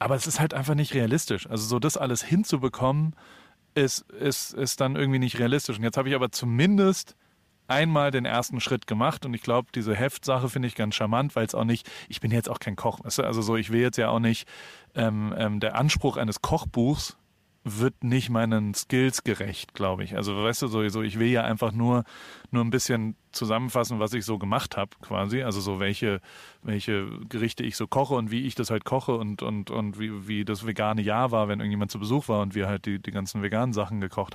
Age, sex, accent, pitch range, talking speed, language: 30-49, male, German, 105-125 Hz, 220 wpm, German